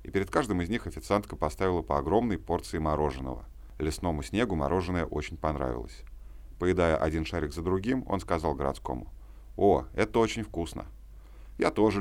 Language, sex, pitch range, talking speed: Russian, male, 70-90 Hz, 150 wpm